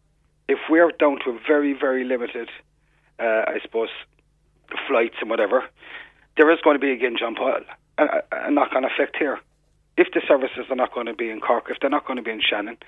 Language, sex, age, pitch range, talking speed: English, male, 40-59, 130-185 Hz, 215 wpm